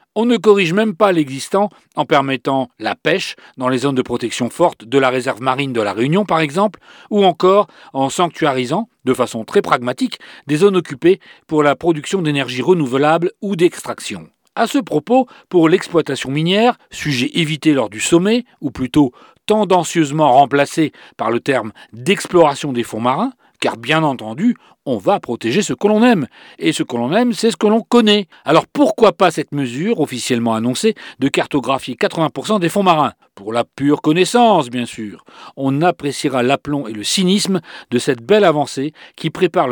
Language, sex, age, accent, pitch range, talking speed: French, male, 40-59, French, 135-200 Hz, 175 wpm